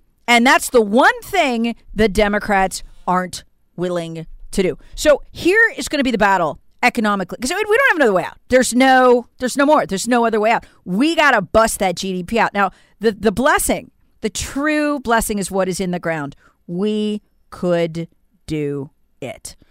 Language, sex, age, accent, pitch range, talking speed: English, female, 40-59, American, 195-260 Hz, 185 wpm